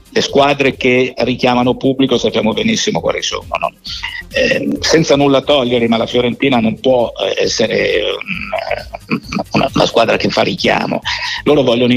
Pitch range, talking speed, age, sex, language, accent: 115-155 Hz, 140 wpm, 50-69, male, Italian, native